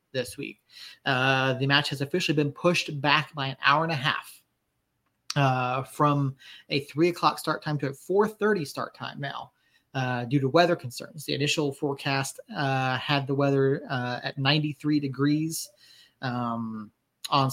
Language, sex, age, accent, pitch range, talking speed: English, male, 30-49, American, 130-150 Hz, 170 wpm